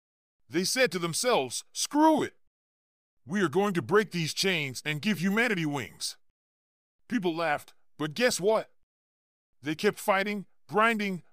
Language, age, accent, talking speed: English, 40-59, American, 140 wpm